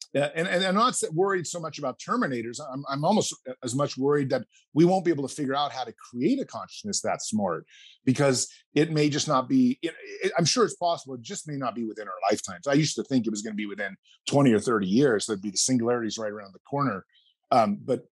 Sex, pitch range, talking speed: male, 125-175 Hz, 255 wpm